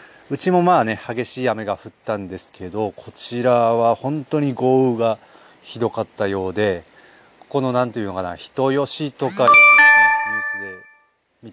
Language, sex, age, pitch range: Japanese, male, 30-49, 100-125 Hz